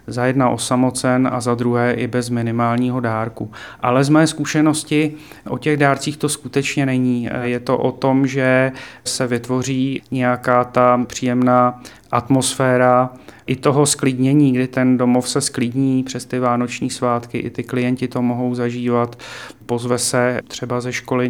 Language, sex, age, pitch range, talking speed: Czech, male, 30-49, 120-130 Hz, 150 wpm